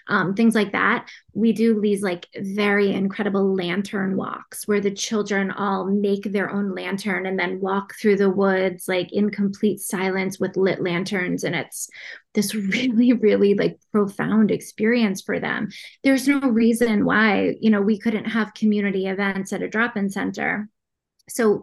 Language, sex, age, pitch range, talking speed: English, female, 20-39, 200-230 Hz, 165 wpm